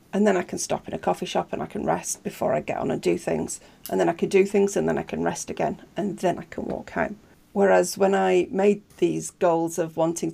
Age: 40-59